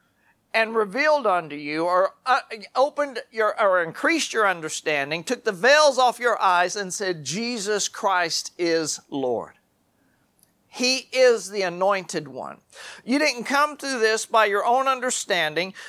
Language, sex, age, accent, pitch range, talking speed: English, male, 40-59, American, 175-260 Hz, 140 wpm